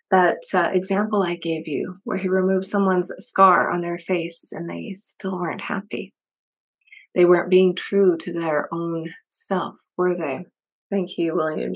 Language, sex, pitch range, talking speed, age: English, female, 180-230 Hz, 165 wpm, 30-49